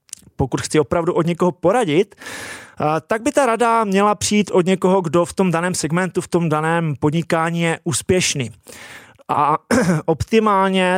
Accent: native